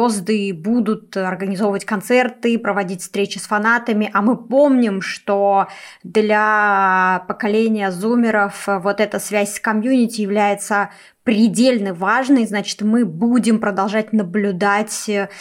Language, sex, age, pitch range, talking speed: Russian, female, 20-39, 200-235 Hz, 105 wpm